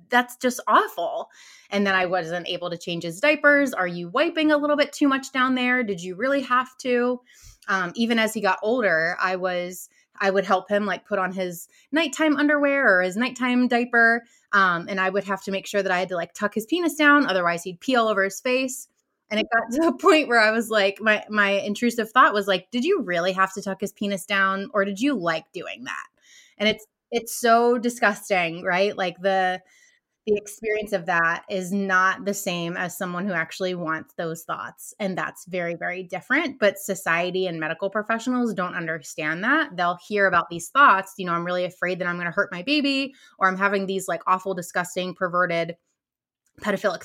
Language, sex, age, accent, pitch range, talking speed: English, female, 20-39, American, 180-240 Hz, 210 wpm